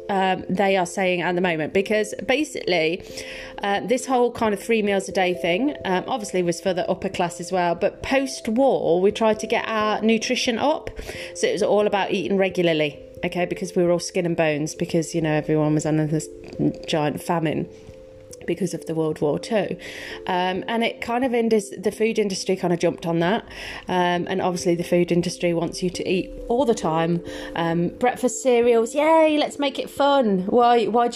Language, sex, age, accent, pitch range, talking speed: English, female, 30-49, British, 175-240 Hz, 200 wpm